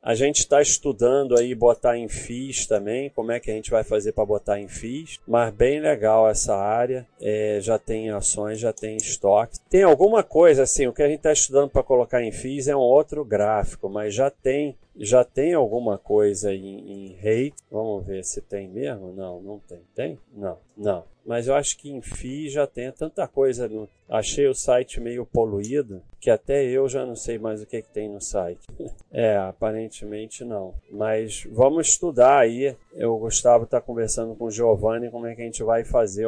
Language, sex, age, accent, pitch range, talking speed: Portuguese, male, 40-59, Brazilian, 105-135 Hz, 195 wpm